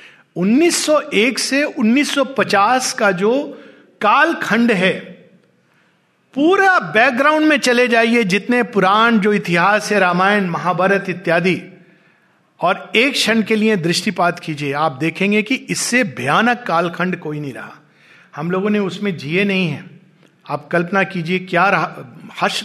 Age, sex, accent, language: 50-69, male, native, Hindi